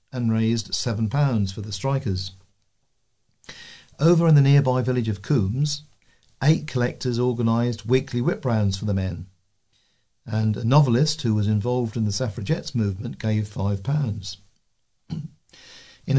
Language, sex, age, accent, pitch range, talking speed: English, male, 50-69, British, 110-140 Hz, 130 wpm